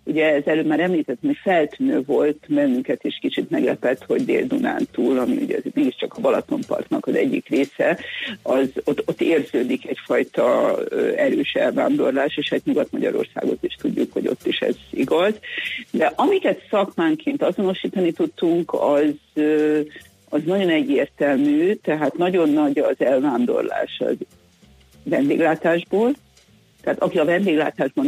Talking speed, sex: 130 wpm, female